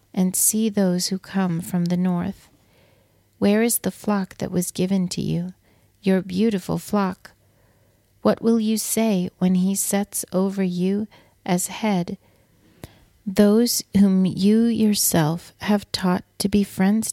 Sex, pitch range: female, 170-200 Hz